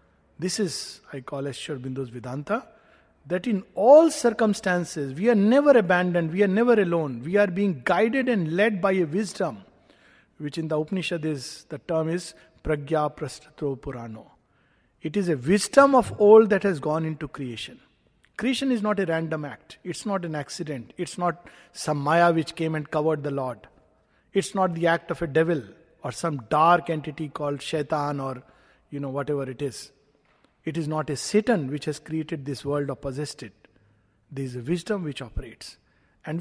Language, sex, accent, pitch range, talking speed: English, male, Indian, 145-205 Hz, 180 wpm